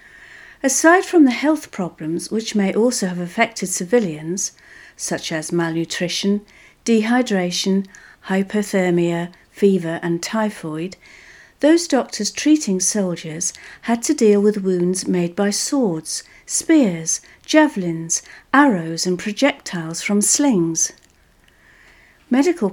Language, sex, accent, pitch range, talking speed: English, female, British, 175-235 Hz, 105 wpm